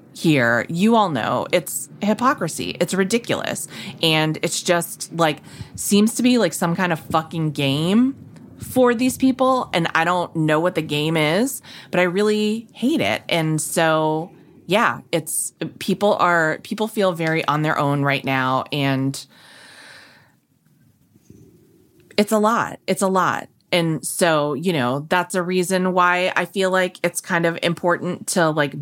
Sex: female